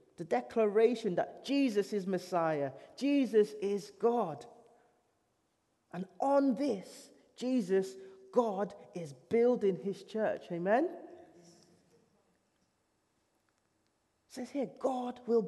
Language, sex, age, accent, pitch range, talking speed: English, male, 30-49, British, 175-230 Hz, 95 wpm